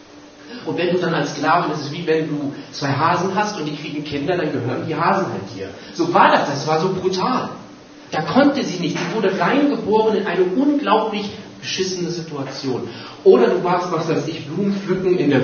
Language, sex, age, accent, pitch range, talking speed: German, male, 40-59, German, 140-180 Hz, 205 wpm